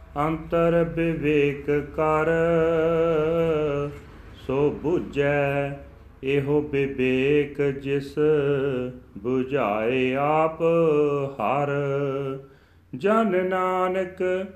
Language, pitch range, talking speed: Punjabi, 140-165 Hz, 55 wpm